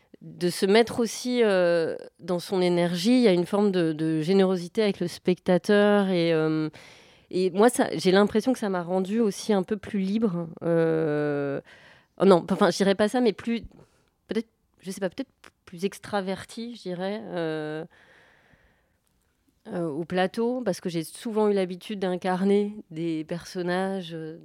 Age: 30-49